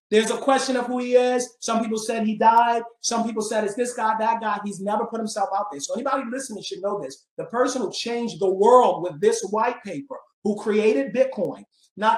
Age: 40-59